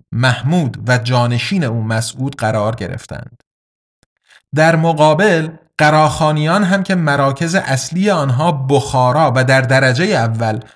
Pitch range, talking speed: 125-160 Hz, 110 wpm